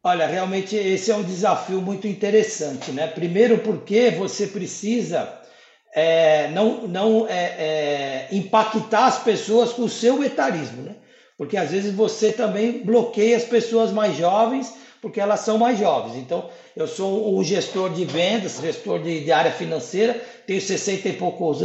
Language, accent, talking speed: Portuguese, Brazilian, 160 wpm